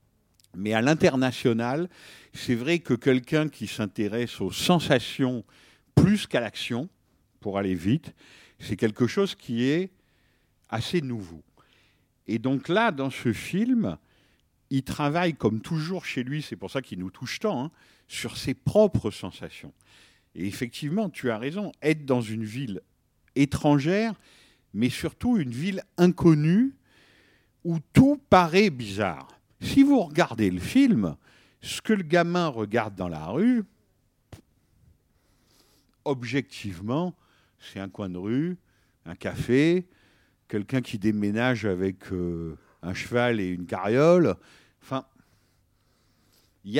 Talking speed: 130 wpm